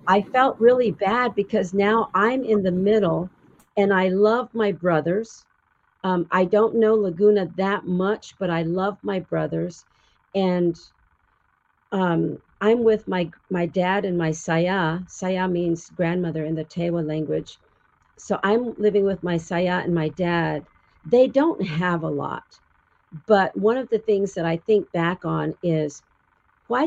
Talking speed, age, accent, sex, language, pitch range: 155 wpm, 50-69, American, female, English, 170-205 Hz